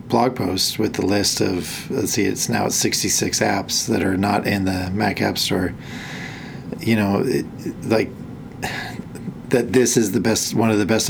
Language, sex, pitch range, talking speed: English, male, 100-115 Hz, 180 wpm